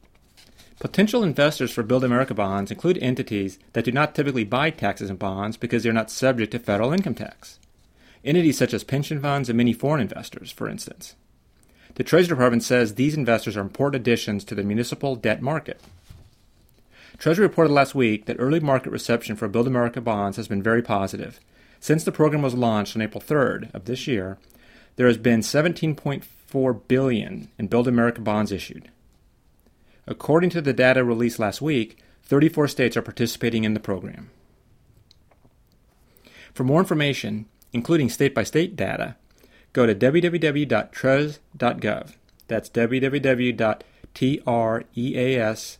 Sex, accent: male, American